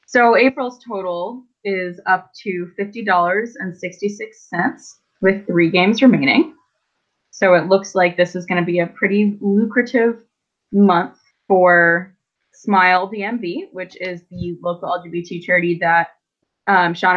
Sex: female